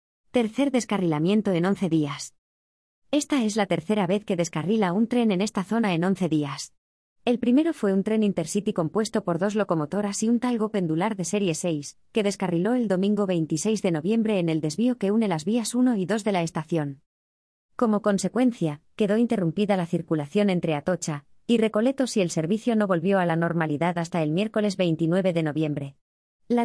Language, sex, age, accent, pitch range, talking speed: Spanish, female, 20-39, Spanish, 165-220 Hz, 185 wpm